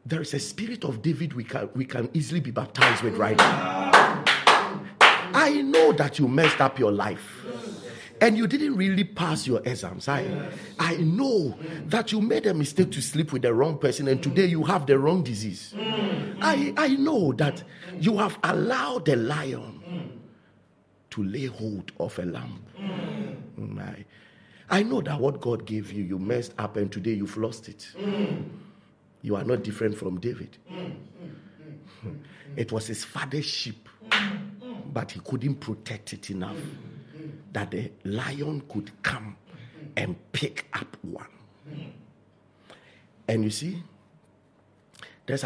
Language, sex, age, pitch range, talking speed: English, male, 50-69, 115-185 Hz, 150 wpm